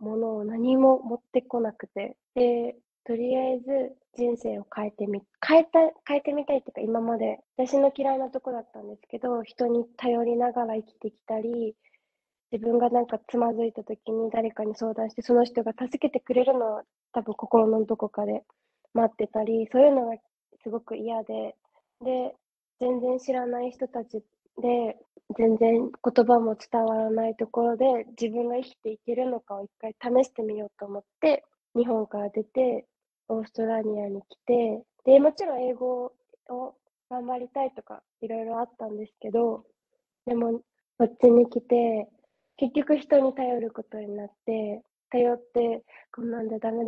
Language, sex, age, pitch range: Japanese, female, 20-39, 225-255 Hz